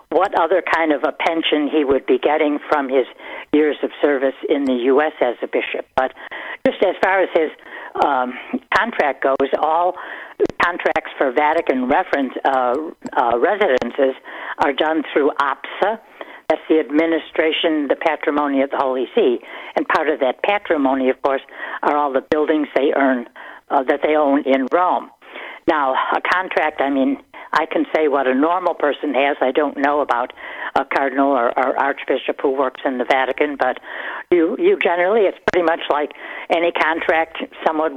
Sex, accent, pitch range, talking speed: female, American, 135-160 Hz, 170 wpm